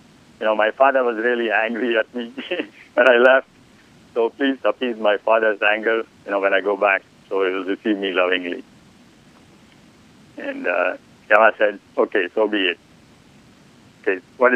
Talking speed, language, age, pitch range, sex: 165 wpm, English, 60-79, 95-115 Hz, male